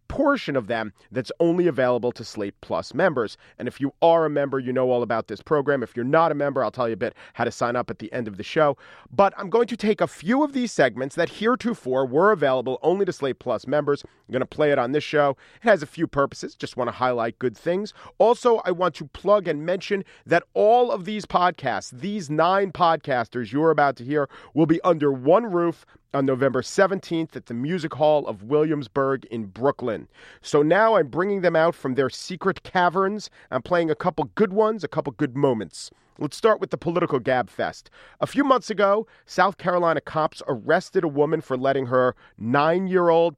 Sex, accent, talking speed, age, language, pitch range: male, American, 215 wpm, 40-59, English, 125-175 Hz